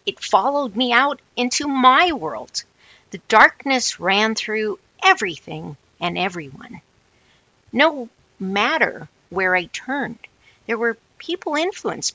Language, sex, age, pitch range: English, female, 50-69, 190-275 Hz